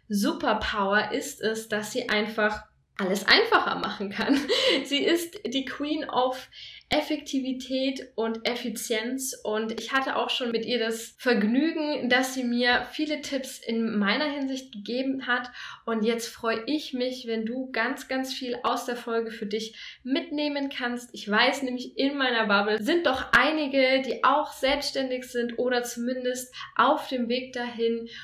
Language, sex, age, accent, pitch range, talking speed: German, female, 10-29, German, 215-260 Hz, 155 wpm